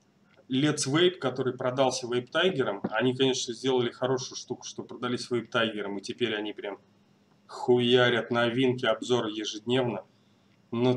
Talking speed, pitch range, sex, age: 130 wpm, 120-145 Hz, male, 20-39